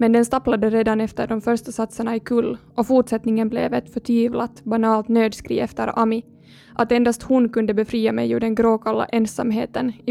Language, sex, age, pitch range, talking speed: Swedish, female, 20-39, 220-240 Hz, 180 wpm